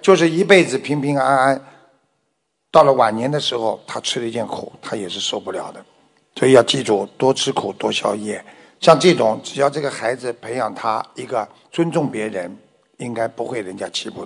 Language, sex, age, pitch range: Chinese, male, 60-79, 120-170 Hz